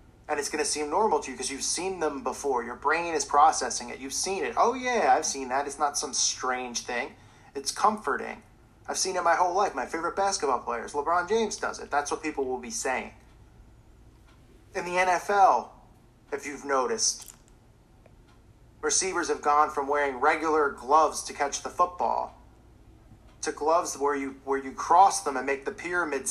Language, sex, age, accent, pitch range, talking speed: English, male, 30-49, American, 125-160 Hz, 185 wpm